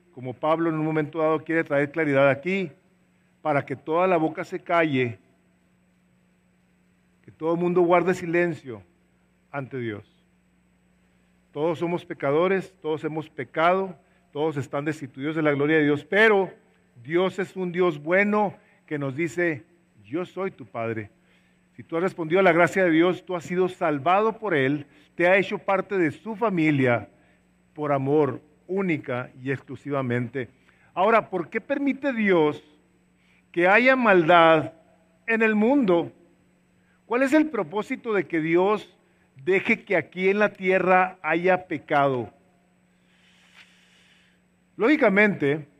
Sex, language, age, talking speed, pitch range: male, English, 50-69, 140 wpm, 140-190 Hz